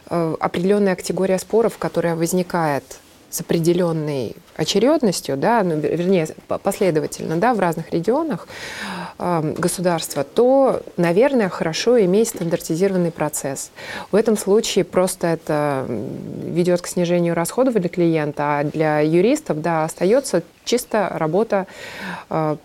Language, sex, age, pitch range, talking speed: Russian, female, 20-39, 165-210 Hz, 115 wpm